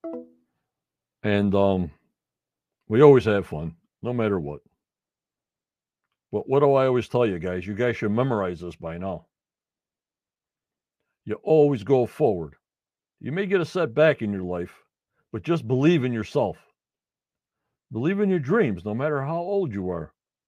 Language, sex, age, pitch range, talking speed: English, male, 60-79, 100-135 Hz, 150 wpm